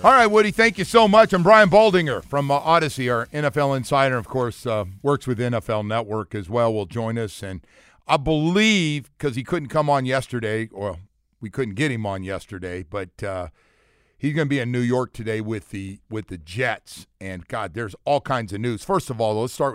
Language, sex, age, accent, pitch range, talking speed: English, male, 50-69, American, 115-155 Hz, 215 wpm